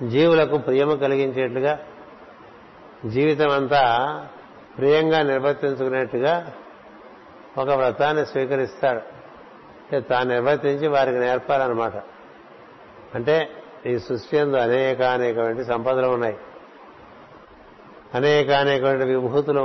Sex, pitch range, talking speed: male, 125-145 Hz, 70 wpm